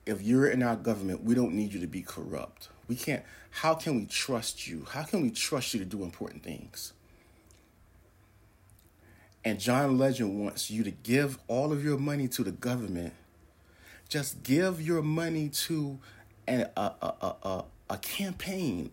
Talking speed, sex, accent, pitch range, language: 170 wpm, male, American, 85-140 Hz, English